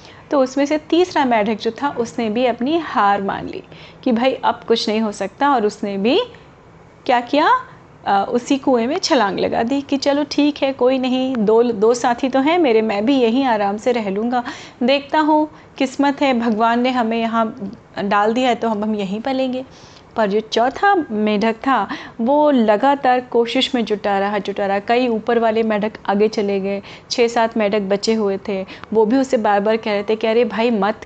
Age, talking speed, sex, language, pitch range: 30-49, 200 wpm, female, Hindi, 215-265 Hz